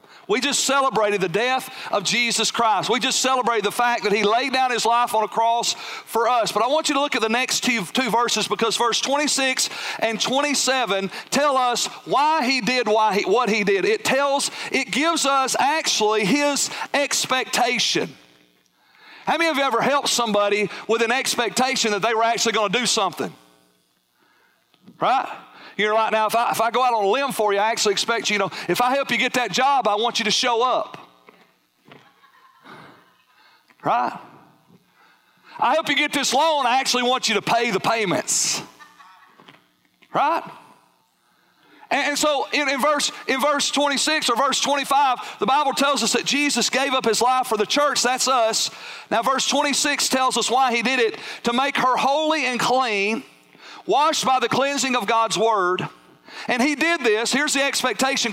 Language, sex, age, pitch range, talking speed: English, male, 40-59, 225-280 Hz, 185 wpm